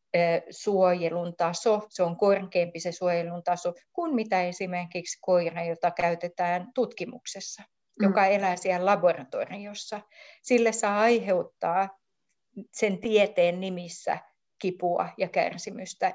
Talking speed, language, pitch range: 105 wpm, Finnish, 175-205 Hz